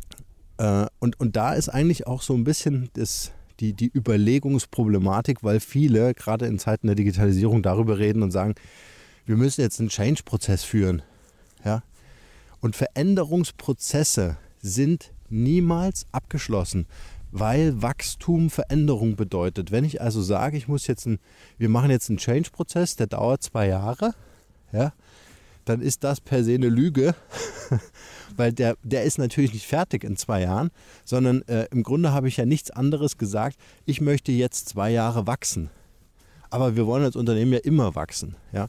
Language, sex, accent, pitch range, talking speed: German, male, German, 100-135 Hz, 145 wpm